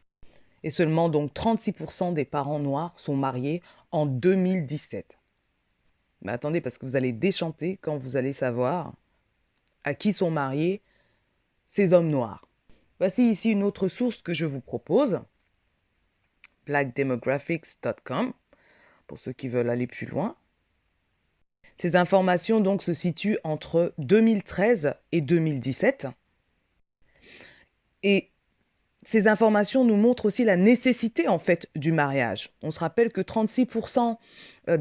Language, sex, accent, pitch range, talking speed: French, female, French, 150-225 Hz, 125 wpm